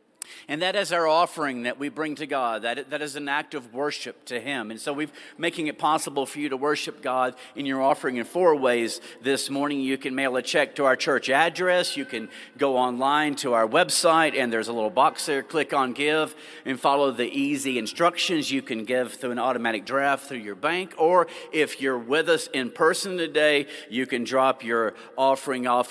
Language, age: English, 50-69